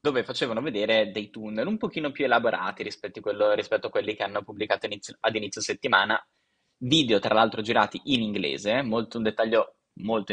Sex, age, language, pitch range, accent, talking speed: male, 10-29, Italian, 100-115 Hz, native, 165 wpm